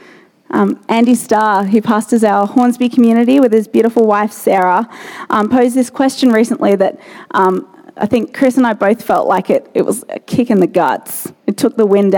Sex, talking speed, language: female, 195 wpm, English